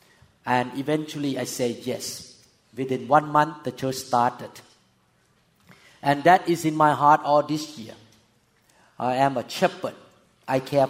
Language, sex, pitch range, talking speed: English, male, 130-155 Hz, 145 wpm